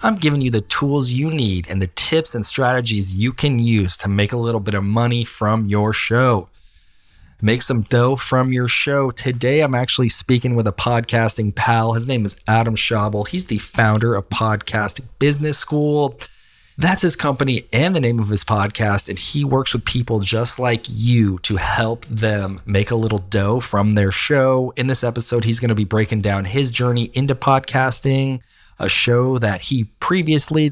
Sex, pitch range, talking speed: male, 105-130 Hz, 190 wpm